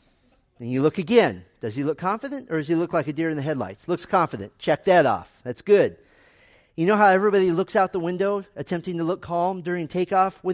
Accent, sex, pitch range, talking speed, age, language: American, male, 145-200 Hz, 230 wpm, 40-59, English